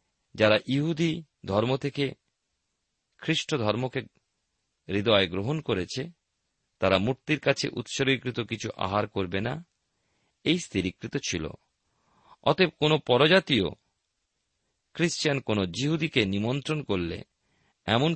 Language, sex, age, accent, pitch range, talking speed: Bengali, male, 50-69, native, 100-150 Hz, 95 wpm